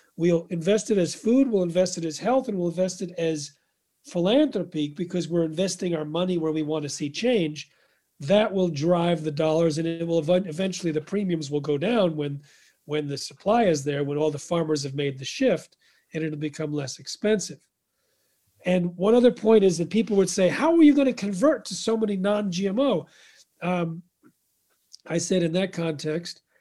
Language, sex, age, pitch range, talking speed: English, male, 40-59, 160-200 Hz, 195 wpm